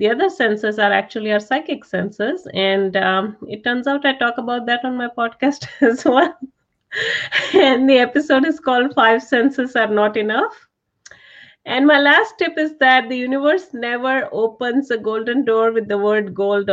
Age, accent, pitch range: 30-49, Indian, 205-250 Hz